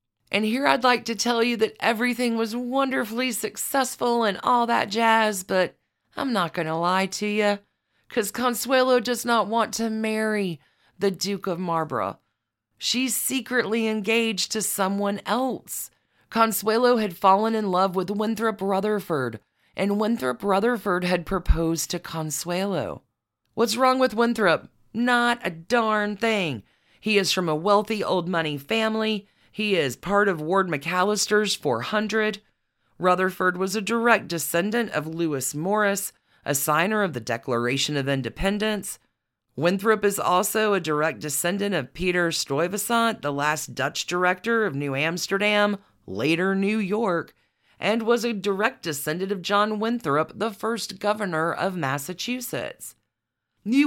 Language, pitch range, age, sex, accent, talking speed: English, 165-225 Hz, 40-59, female, American, 140 wpm